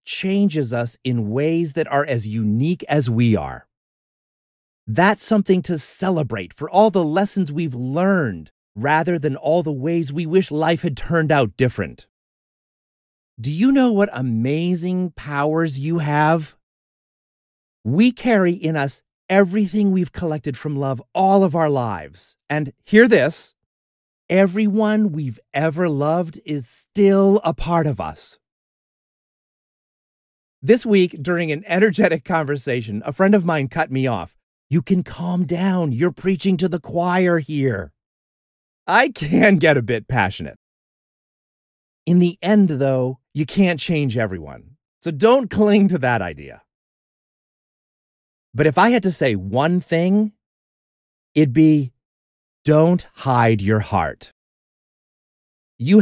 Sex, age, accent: male, 40-59, American